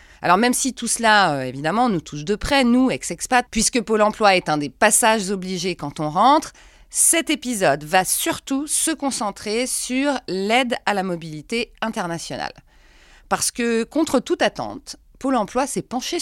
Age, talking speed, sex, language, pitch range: 30-49, 165 wpm, female, French, 160-255 Hz